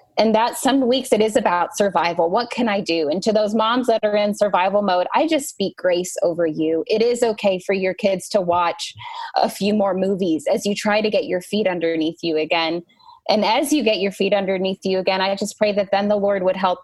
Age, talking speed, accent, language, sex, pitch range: 20-39, 240 wpm, American, English, female, 195-255 Hz